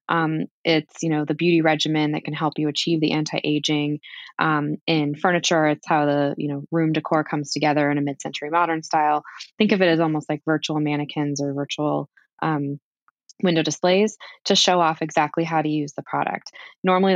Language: English